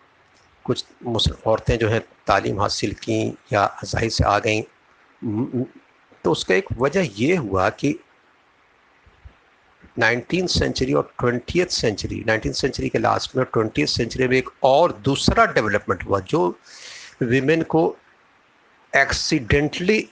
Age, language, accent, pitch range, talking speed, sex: 50-69, Hindi, native, 110-140 Hz, 120 wpm, male